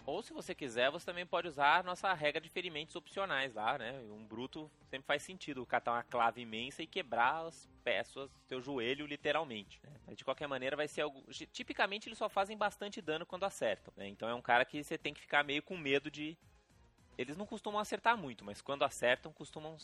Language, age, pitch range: Portuguese, 20-39, 125-185 Hz